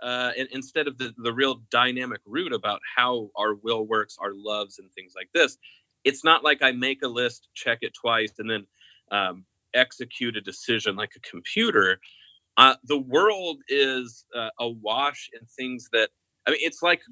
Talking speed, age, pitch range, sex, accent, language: 180 wpm, 30-49, 105-145 Hz, male, American, English